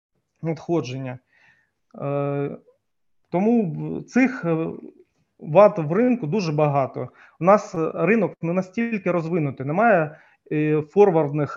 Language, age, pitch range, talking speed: Ukrainian, 30-49, 155-190 Hz, 85 wpm